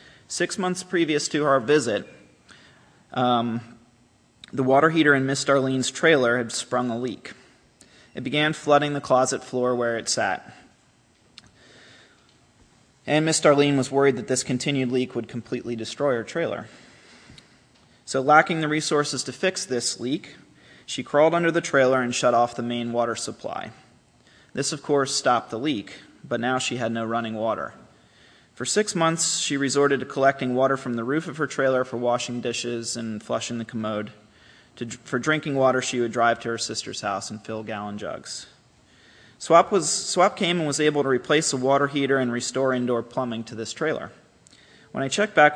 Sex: male